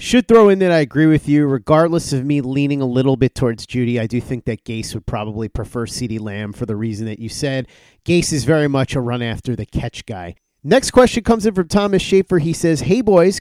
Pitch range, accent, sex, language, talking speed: 130-165 Hz, American, male, English, 240 wpm